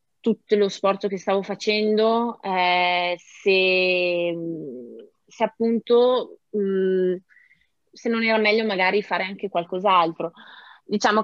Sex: female